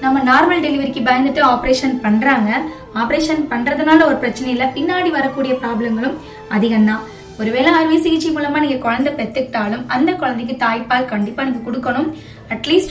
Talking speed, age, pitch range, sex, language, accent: 135 wpm, 20-39, 235-300 Hz, female, Tamil, native